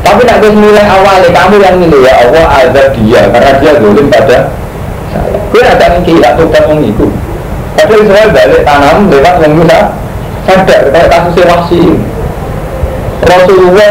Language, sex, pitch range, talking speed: Indonesian, male, 150-210 Hz, 145 wpm